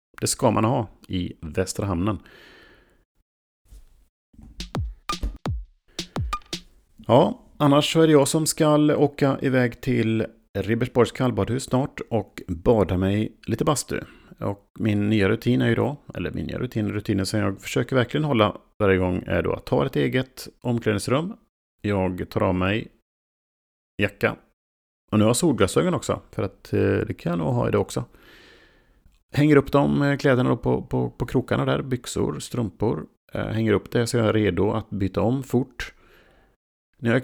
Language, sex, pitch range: Swedish, male, 95-125 Hz